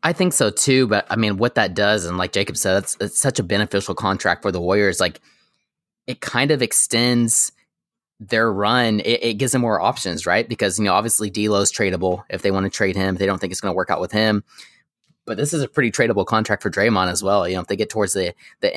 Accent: American